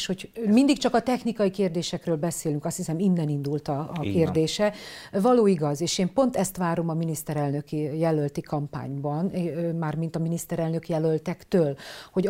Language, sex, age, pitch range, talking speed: Hungarian, female, 50-69, 155-190 Hz, 145 wpm